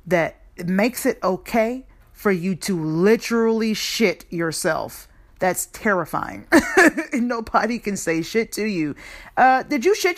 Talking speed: 140 wpm